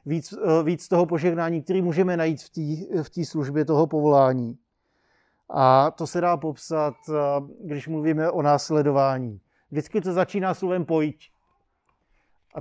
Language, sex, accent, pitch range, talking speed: Czech, male, native, 140-175 Hz, 135 wpm